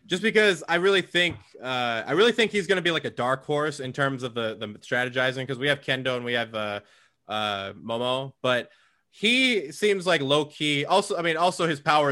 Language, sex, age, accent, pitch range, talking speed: English, male, 20-39, American, 125-175 Hz, 225 wpm